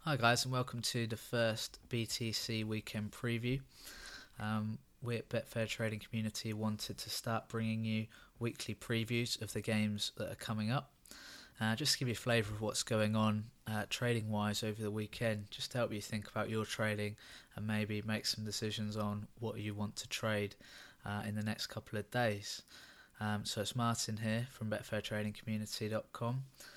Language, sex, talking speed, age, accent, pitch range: English, male, 180 wpm, 20-39, British, 105-120 Hz